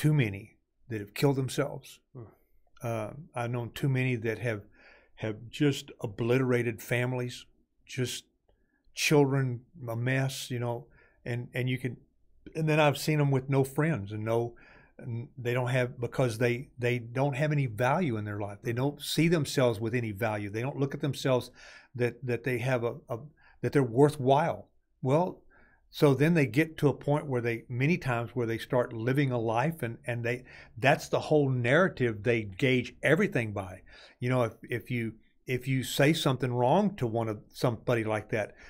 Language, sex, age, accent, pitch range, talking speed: English, male, 50-69, American, 120-140 Hz, 180 wpm